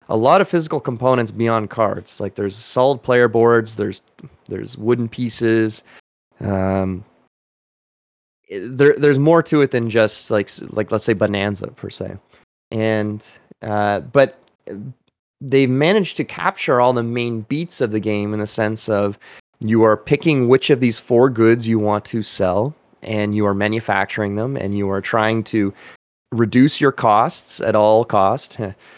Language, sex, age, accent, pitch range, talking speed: English, male, 20-39, American, 110-130 Hz, 160 wpm